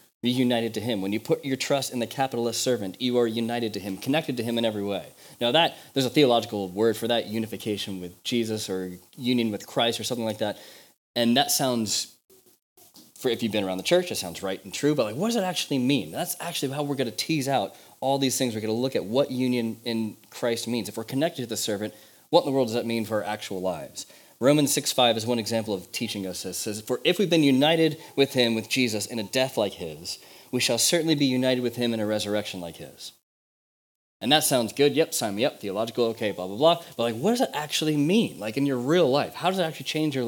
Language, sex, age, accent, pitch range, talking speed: English, male, 30-49, American, 110-140 Hz, 255 wpm